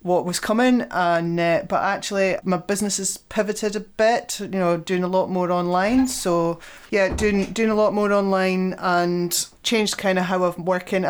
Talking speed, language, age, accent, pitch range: 190 wpm, English, 30-49, British, 170-205 Hz